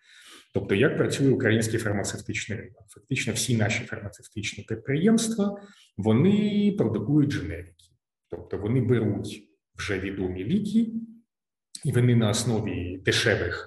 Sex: male